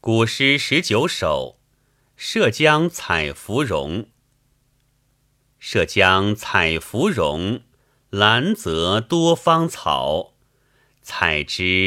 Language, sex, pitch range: Chinese, male, 95-135 Hz